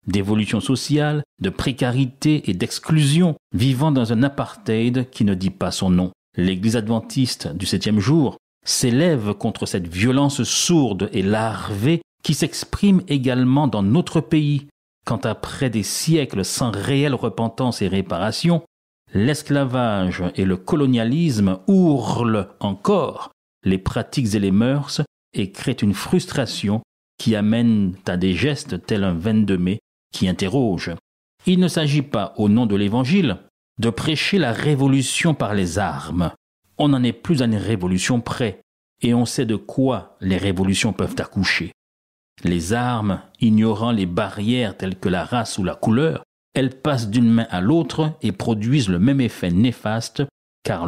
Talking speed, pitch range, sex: 150 wpm, 100-140 Hz, male